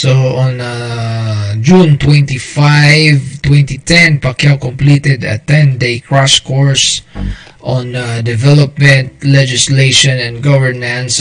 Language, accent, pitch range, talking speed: Filipino, native, 115-145 Hz, 95 wpm